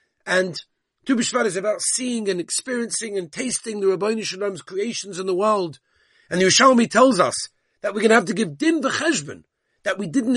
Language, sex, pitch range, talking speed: English, male, 175-230 Hz, 195 wpm